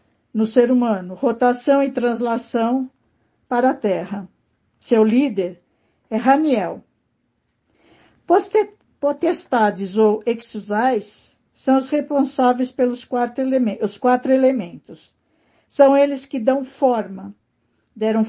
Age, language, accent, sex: 60-79, Portuguese, Brazilian, female